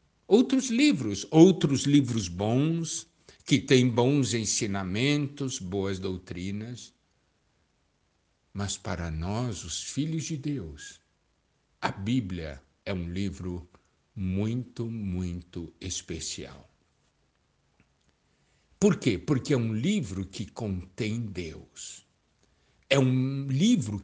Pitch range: 85-140 Hz